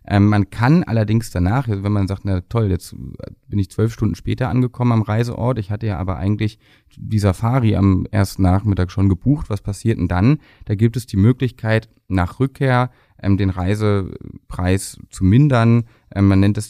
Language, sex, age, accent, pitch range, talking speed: German, male, 30-49, German, 90-110 Hz, 180 wpm